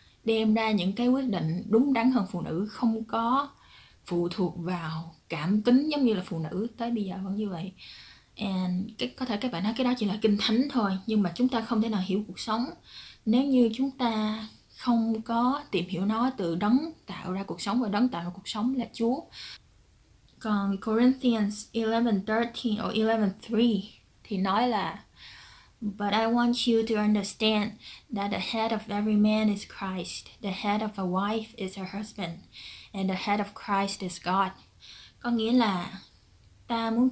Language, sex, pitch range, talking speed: Vietnamese, female, 185-230 Hz, 190 wpm